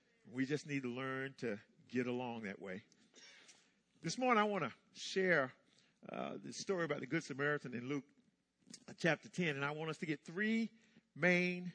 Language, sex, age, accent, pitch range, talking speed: English, male, 50-69, American, 135-210 Hz, 180 wpm